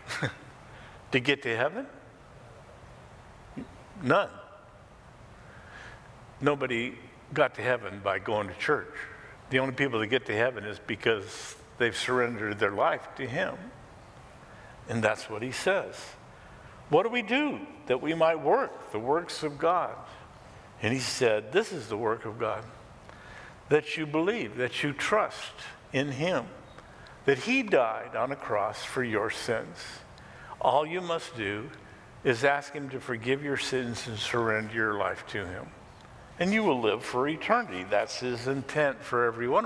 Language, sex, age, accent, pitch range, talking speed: English, male, 60-79, American, 115-140 Hz, 150 wpm